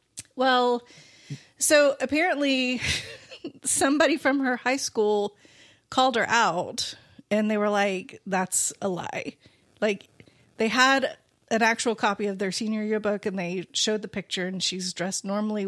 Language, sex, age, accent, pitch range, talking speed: English, female, 30-49, American, 200-255 Hz, 140 wpm